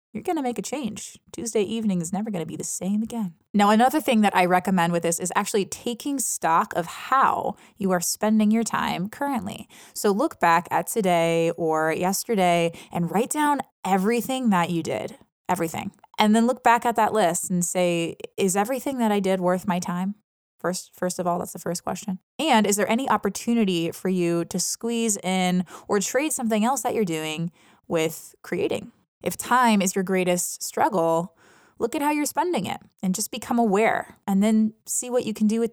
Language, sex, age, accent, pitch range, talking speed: English, female, 20-39, American, 180-225 Hz, 200 wpm